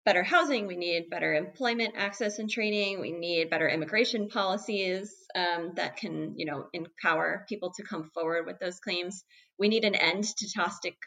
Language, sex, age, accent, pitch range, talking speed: English, female, 20-39, American, 160-220 Hz, 180 wpm